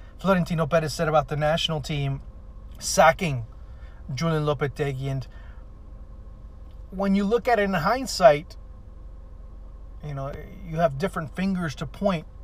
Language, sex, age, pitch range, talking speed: English, male, 30-49, 105-160 Hz, 125 wpm